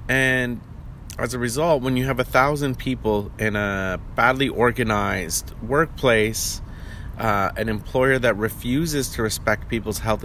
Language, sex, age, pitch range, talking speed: English, male, 30-49, 100-125 Hz, 140 wpm